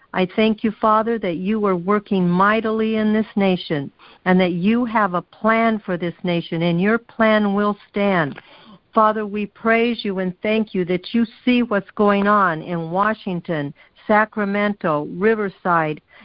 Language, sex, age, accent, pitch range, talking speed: English, female, 60-79, American, 180-220 Hz, 160 wpm